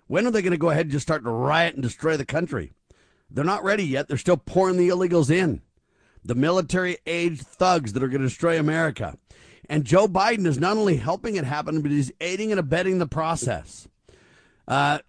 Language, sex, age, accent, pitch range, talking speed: English, male, 50-69, American, 130-175 Hz, 205 wpm